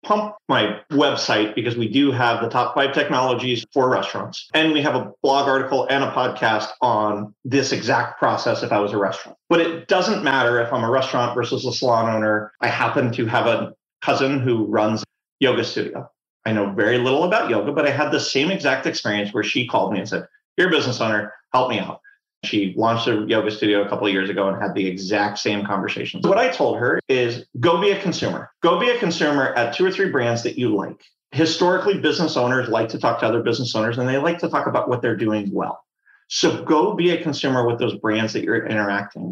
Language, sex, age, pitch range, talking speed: English, male, 30-49, 110-160 Hz, 225 wpm